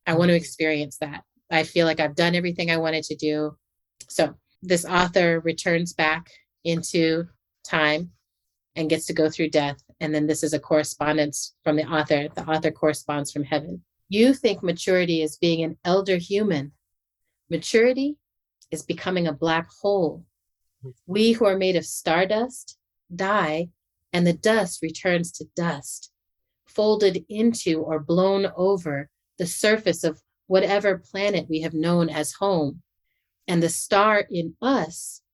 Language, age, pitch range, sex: English, 30-49, 155-190 Hz, female